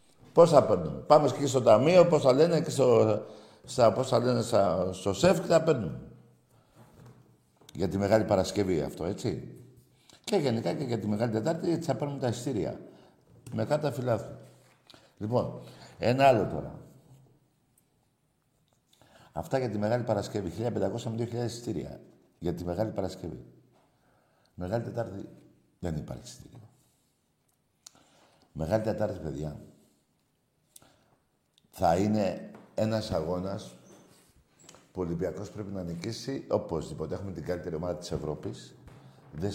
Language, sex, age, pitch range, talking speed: Greek, male, 60-79, 90-135 Hz, 120 wpm